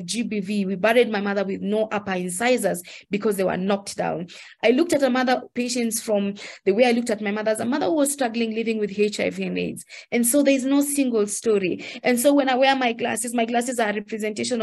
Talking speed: 225 wpm